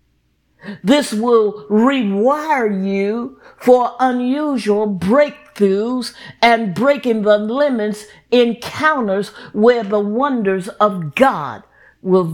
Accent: American